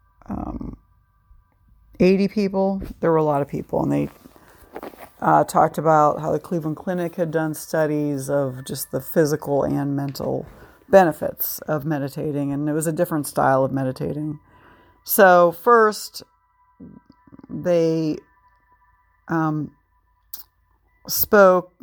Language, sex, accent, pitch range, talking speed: English, female, American, 145-195 Hz, 120 wpm